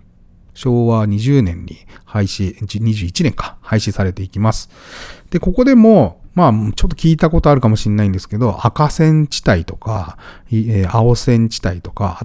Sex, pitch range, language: male, 100-140 Hz, Japanese